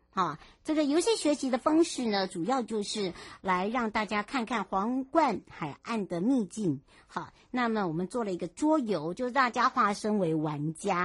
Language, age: Chinese, 60-79